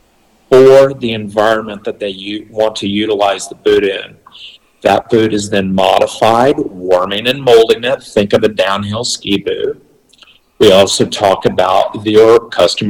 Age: 50-69